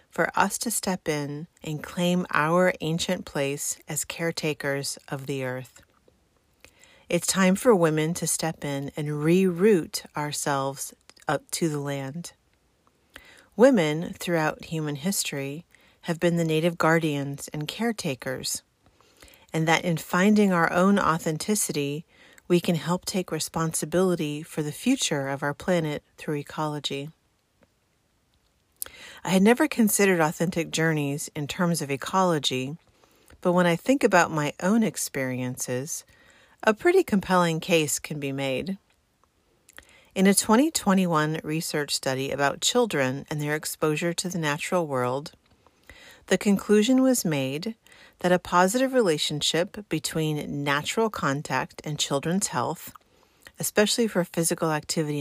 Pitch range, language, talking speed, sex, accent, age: 150-185 Hz, English, 125 wpm, female, American, 40-59